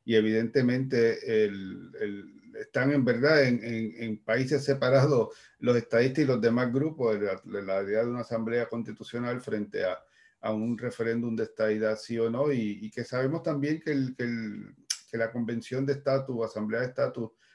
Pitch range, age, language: 110-140 Hz, 40-59, Spanish